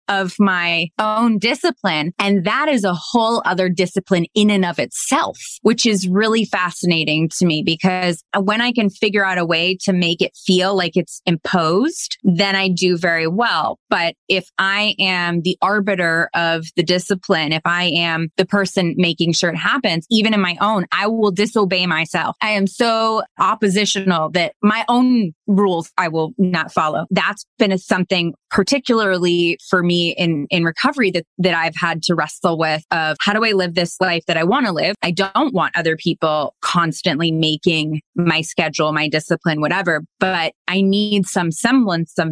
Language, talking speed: English, 175 wpm